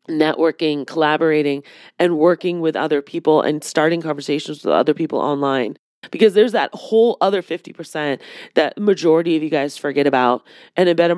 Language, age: English, 30-49